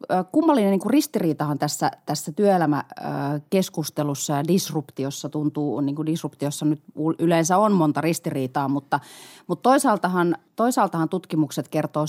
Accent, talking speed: native, 110 wpm